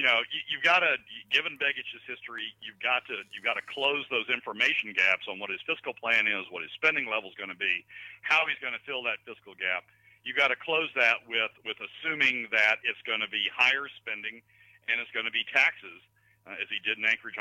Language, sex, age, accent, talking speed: English, male, 50-69, American, 230 wpm